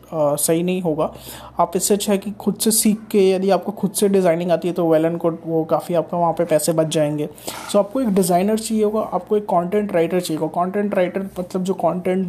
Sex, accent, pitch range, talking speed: male, native, 160-185 Hz, 240 wpm